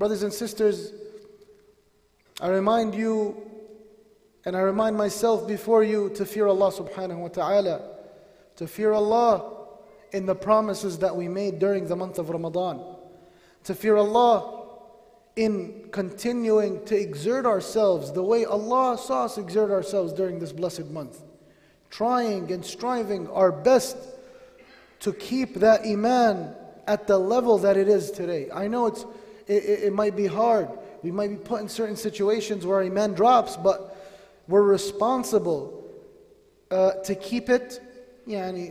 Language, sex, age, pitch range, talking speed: English, male, 30-49, 195-230 Hz, 145 wpm